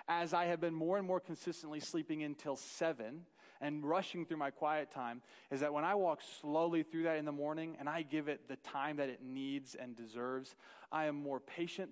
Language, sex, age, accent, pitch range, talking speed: English, male, 30-49, American, 145-175 Hz, 215 wpm